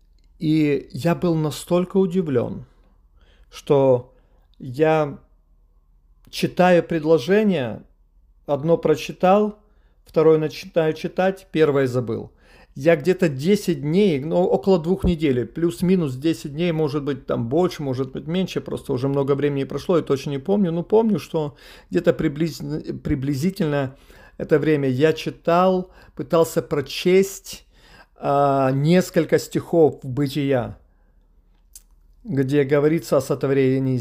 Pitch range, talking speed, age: 135-175 Hz, 110 wpm, 50-69